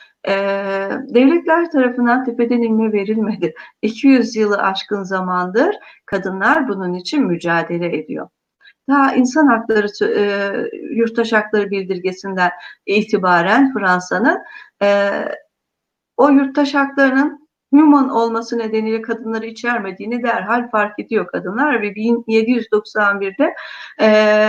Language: Turkish